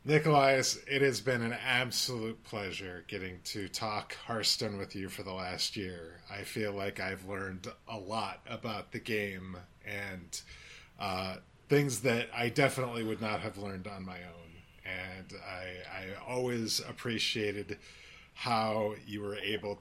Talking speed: 150 wpm